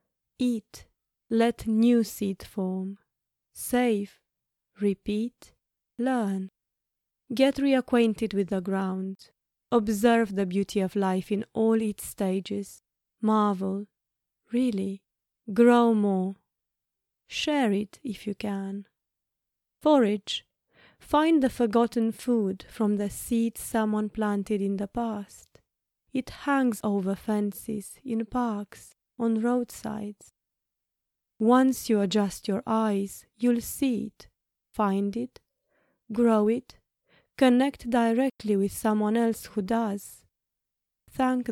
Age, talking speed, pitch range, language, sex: 20-39, 105 wpm, 200-235 Hz, English, female